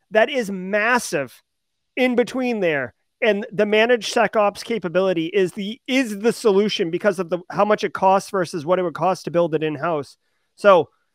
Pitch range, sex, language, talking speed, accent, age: 170-220 Hz, male, English, 180 wpm, American, 30-49